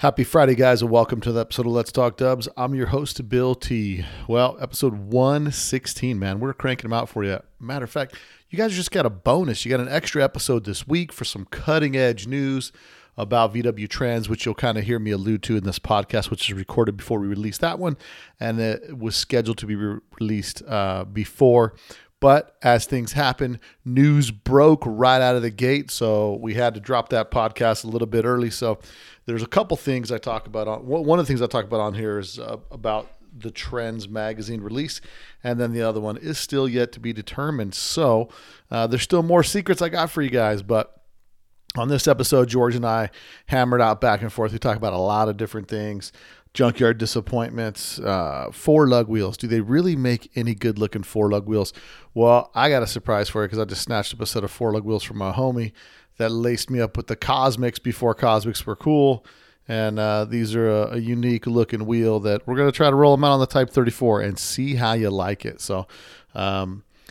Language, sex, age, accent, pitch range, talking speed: English, male, 40-59, American, 110-130 Hz, 220 wpm